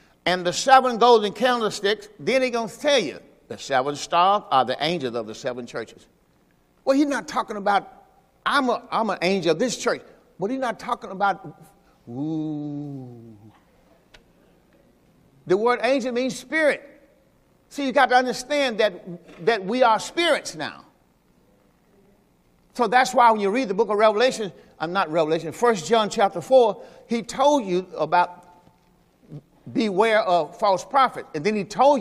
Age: 50-69